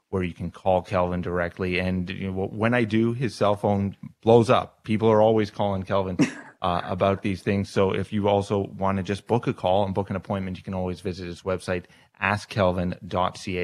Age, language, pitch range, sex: 30-49, English, 90-105 Hz, male